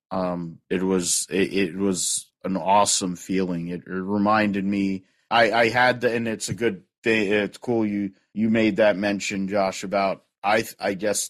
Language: English